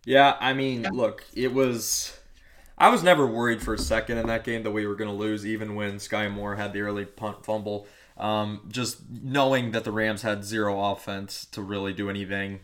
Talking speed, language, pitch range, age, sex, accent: 215 wpm, English, 105-120 Hz, 20-39, male, American